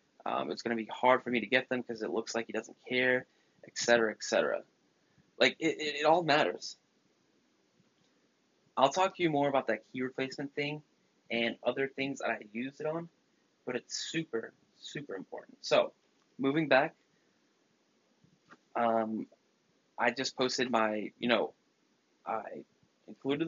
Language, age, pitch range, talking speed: English, 20-39, 115-145 Hz, 160 wpm